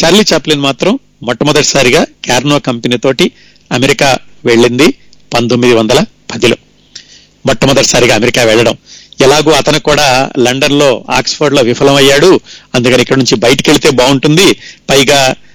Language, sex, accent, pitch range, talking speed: Telugu, male, native, 130-170 Hz, 115 wpm